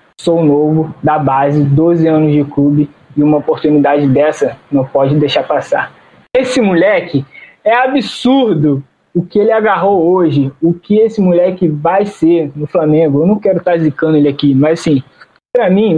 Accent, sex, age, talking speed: Brazilian, male, 20-39, 165 wpm